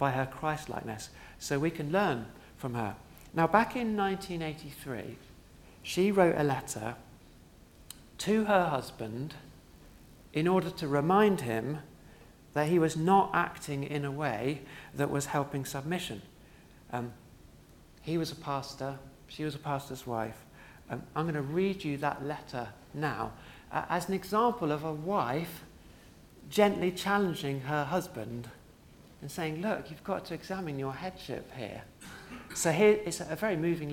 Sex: male